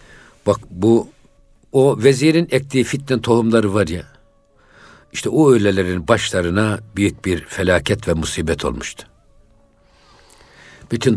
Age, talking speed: 60-79, 105 wpm